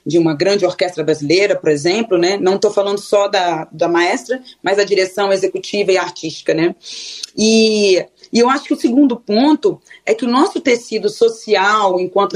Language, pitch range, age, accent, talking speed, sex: Portuguese, 190-250 Hz, 20-39, Brazilian, 180 wpm, female